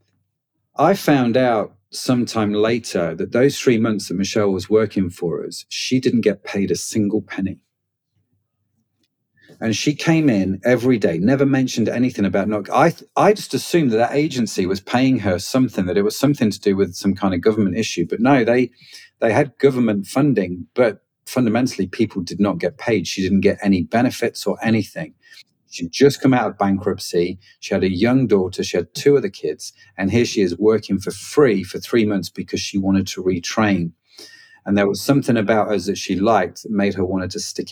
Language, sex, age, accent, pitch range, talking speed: English, male, 40-59, British, 100-130 Hz, 195 wpm